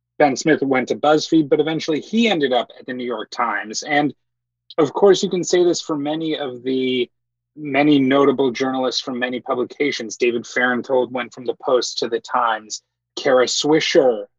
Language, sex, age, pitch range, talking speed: English, male, 30-49, 120-160 Hz, 180 wpm